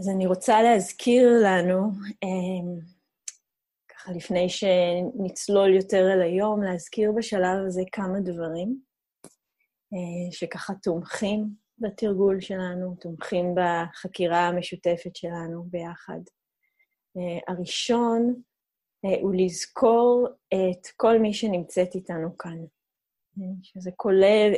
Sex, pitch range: female, 175-210 Hz